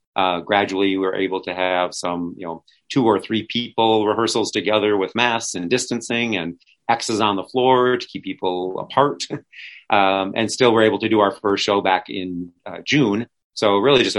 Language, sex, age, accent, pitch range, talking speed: English, male, 40-59, American, 90-115 Hz, 190 wpm